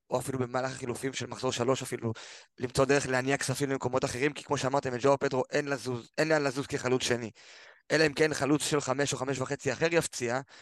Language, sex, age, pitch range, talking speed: Hebrew, male, 20-39, 125-145 Hz, 210 wpm